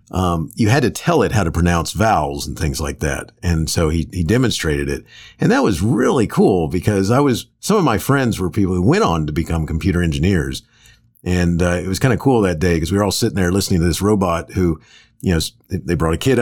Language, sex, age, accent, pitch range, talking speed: English, male, 50-69, American, 80-110 Hz, 245 wpm